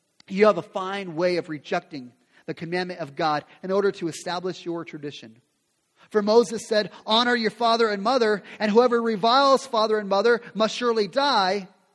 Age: 30-49